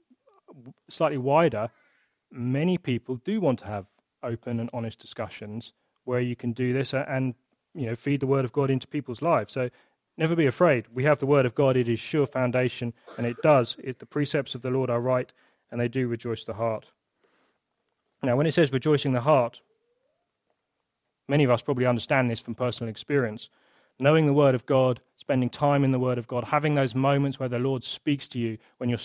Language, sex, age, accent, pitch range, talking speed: English, male, 30-49, British, 115-140 Hz, 200 wpm